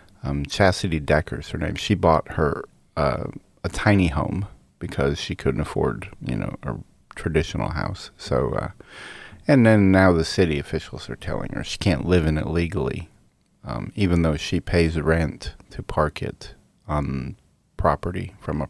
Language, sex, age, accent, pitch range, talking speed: English, male, 30-49, American, 75-95 Hz, 165 wpm